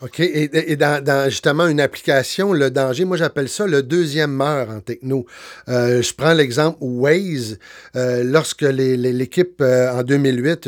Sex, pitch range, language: male, 125-155 Hz, French